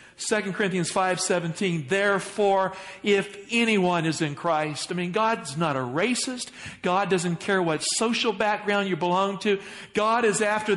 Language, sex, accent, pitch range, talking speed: English, male, American, 155-205 Hz, 155 wpm